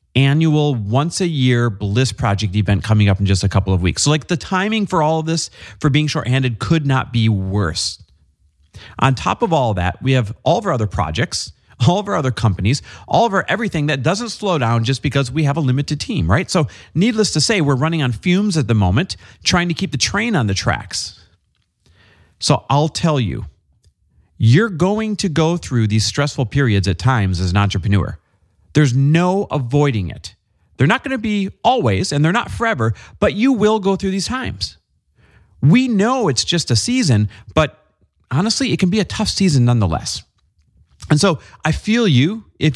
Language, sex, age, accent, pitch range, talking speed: English, male, 40-59, American, 110-165 Hz, 200 wpm